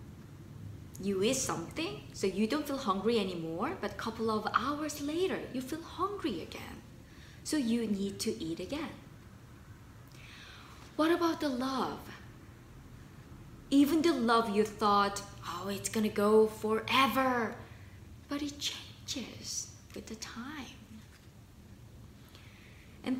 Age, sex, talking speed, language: 20-39, female, 120 wpm, English